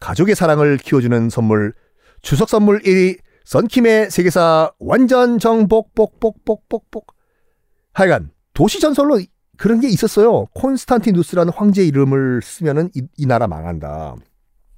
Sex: male